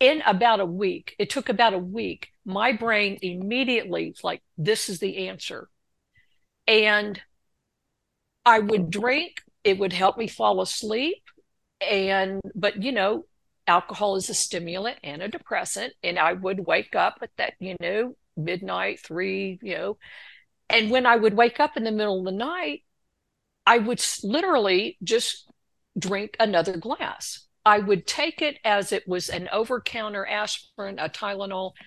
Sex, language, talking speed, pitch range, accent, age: female, English, 155 wpm, 190-235 Hz, American, 50-69